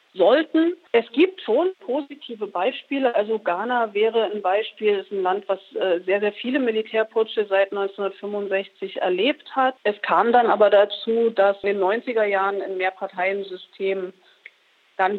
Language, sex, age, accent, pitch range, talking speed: German, female, 40-59, German, 195-235 Hz, 145 wpm